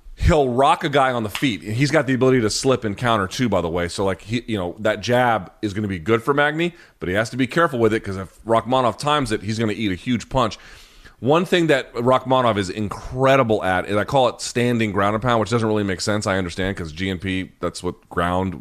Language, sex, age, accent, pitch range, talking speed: English, male, 30-49, American, 100-130 Hz, 255 wpm